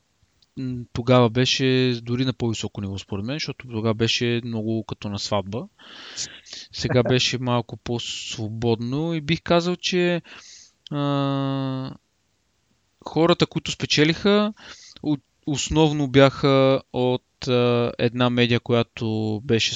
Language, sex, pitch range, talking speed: Bulgarian, male, 110-140 Hz, 105 wpm